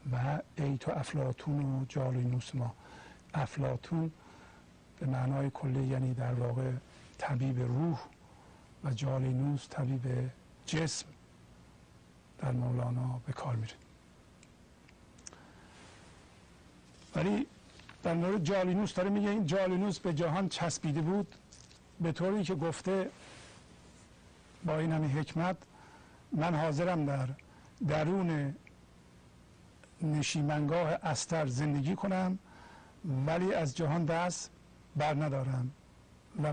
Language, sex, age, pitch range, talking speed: English, male, 50-69, 130-170 Hz, 95 wpm